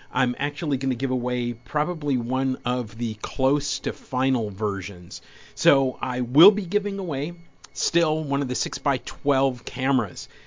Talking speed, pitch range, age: 150 wpm, 115-140 Hz, 50-69